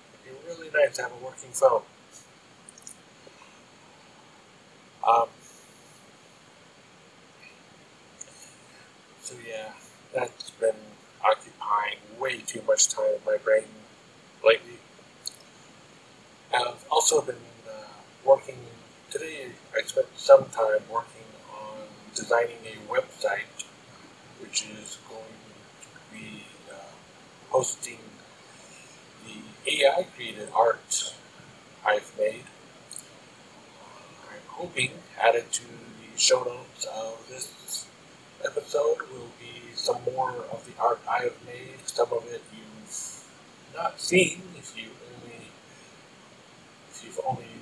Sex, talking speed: male, 95 wpm